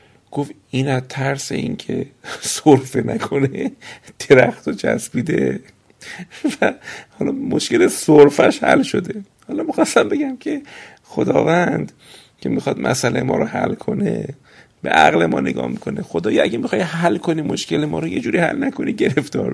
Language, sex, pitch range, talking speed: Persian, male, 115-145 Hz, 140 wpm